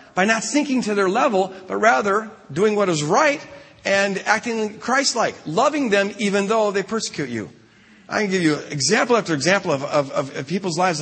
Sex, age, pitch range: male, 50-69, 155-225 Hz